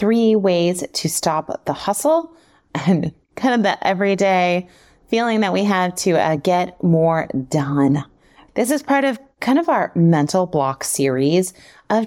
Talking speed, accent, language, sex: 155 wpm, American, English, female